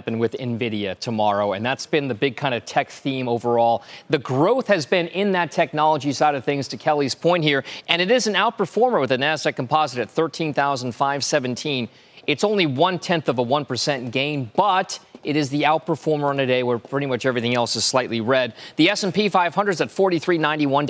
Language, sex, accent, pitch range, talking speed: English, male, American, 130-160 Hz, 190 wpm